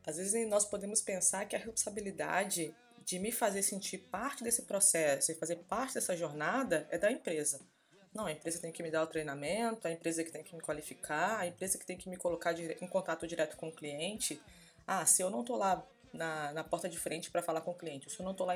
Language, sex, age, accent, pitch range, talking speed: Portuguese, female, 20-39, Brazilian, 165-245 Hz, 240 wpm